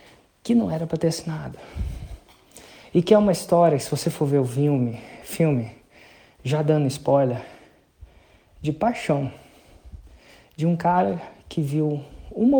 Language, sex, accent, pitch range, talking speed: Portuguese, male, Brazilian, 120-165 Hz, 135 wpm